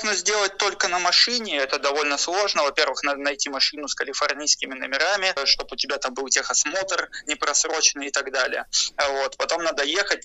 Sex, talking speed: male, 165 wpm